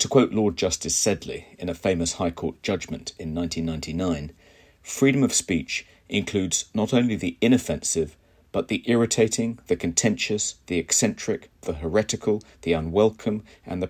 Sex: male